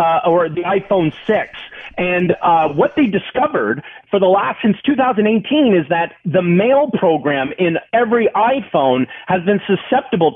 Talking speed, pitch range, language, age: 150 wpm, 170-215 Hz, English, 30-49